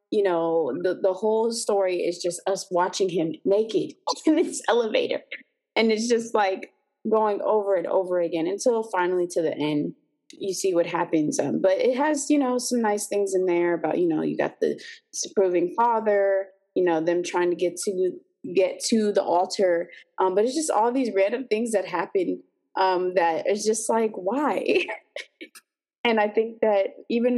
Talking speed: 185 wpm